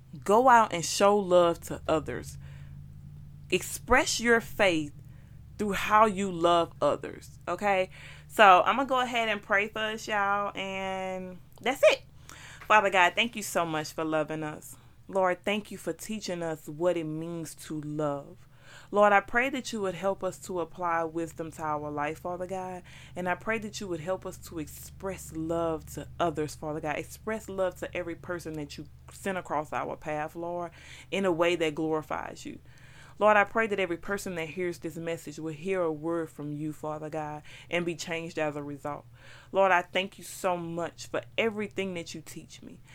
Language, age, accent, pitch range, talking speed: English, 30-49, American, 155-190 Hz, 190 wpm